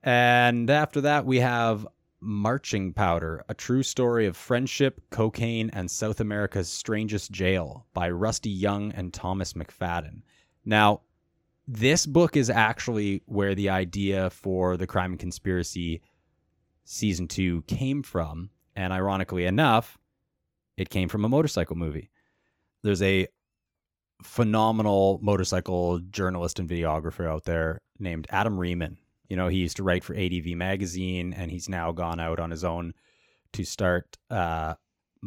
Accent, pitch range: American, 90-110 Hz